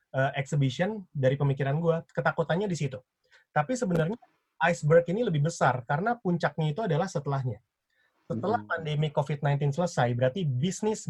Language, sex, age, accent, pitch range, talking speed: Indonesian, male, 30-49, native, 135-170 Hz, 135 wpm